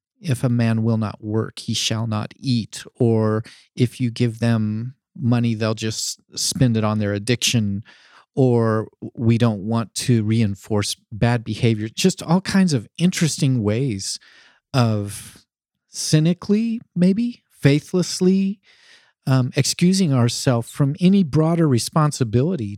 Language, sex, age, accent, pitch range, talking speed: English, male, 40-59, American, 110-145 Hz, 125 wpm